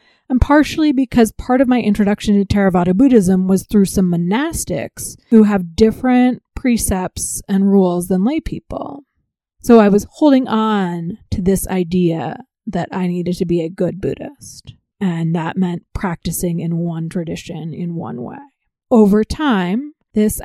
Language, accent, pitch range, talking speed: English, American, 180-230 Hz, 150 wpm